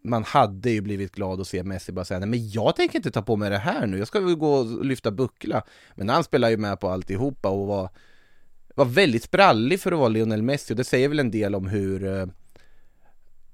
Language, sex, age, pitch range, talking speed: English, male, 20-39, 100-115 Hz, 235 wpm